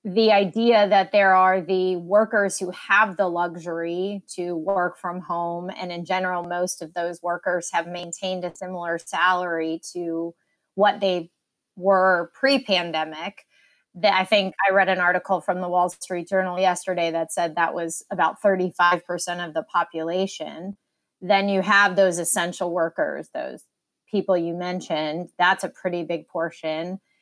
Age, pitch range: 20-39, 170-195 Hz